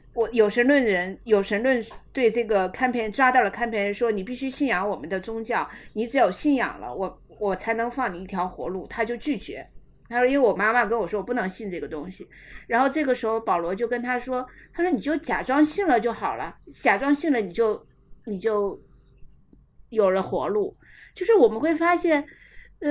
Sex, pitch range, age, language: female, 220-295 Hz, 50-69, Chinese